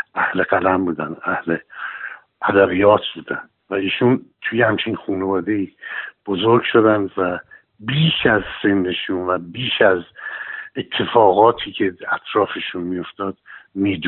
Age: 60-79